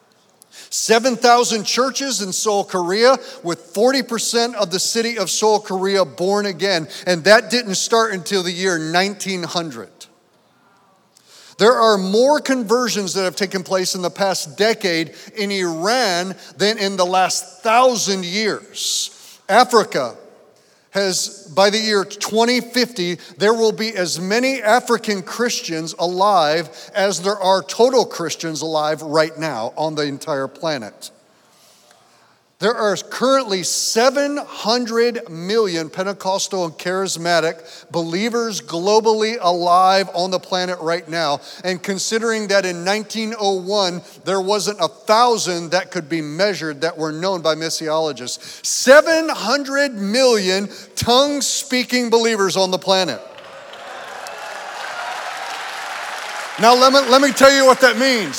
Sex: male